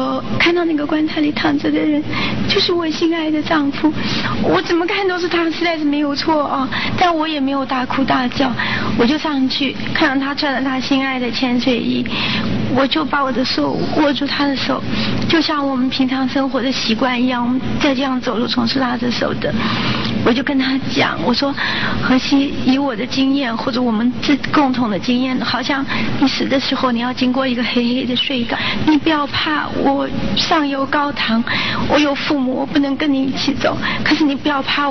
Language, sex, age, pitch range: Chinese, female, 40-59, 260-295 Hz